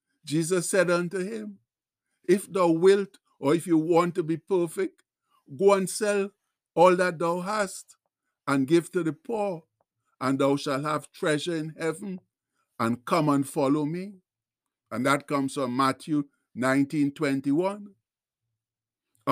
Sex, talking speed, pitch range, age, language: male, 135 wpm, 140-180 Hz, 60-79, English